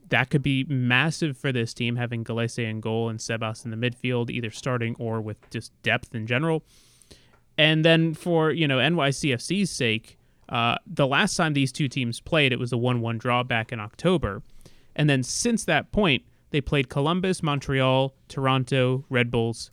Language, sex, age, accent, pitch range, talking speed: English, male, 30-49, American, 120-150 Hz, 180 wpm